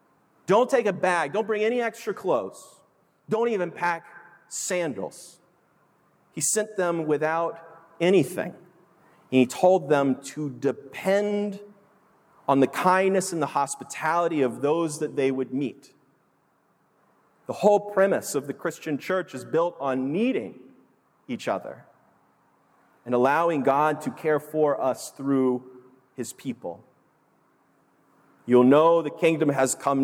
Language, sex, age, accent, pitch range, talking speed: English, male, 40-59, American, 130-170 Hz, 130 wpm